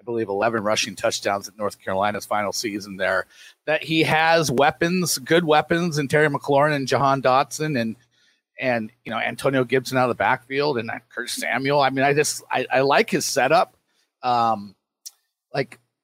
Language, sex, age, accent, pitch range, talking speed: English, male, 30-49, American, 120-155 Hz, 180 wpm